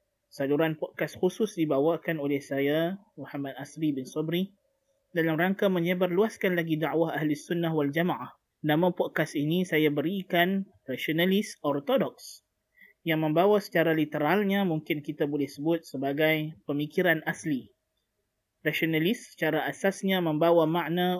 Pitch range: 155-185 Hz